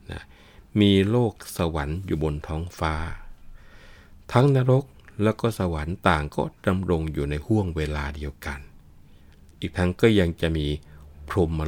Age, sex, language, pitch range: 60-79, male, Thai, 75-95 Hz